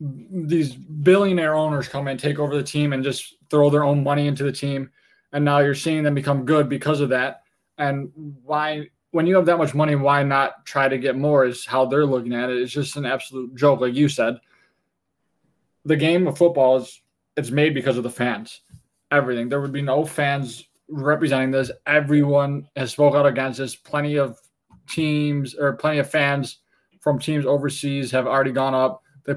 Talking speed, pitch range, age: 195 wpm, 130-150 Hz, 20-39